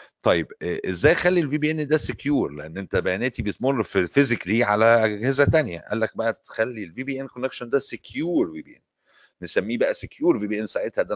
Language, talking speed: Arabic, 195 wpm